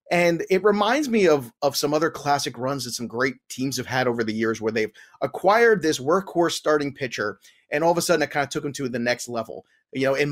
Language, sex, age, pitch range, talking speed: English, male, 30-49, 130-160 Hz, 250 wpm